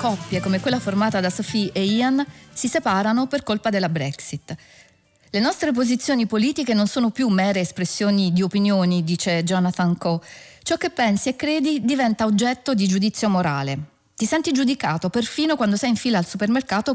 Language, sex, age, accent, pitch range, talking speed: Italian, female, 40-59, native, 180-255 Hz, 170 wpm